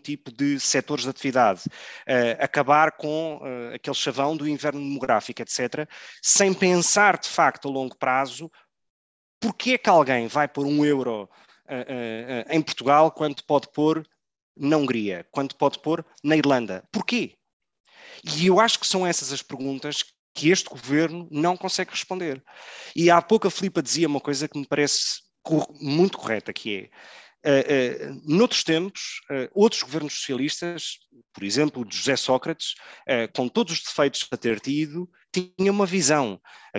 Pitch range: 130-165 Hz